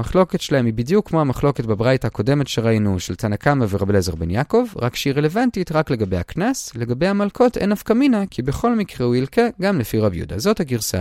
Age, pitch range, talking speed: 30-49, 105-175 Hz, 205 wpm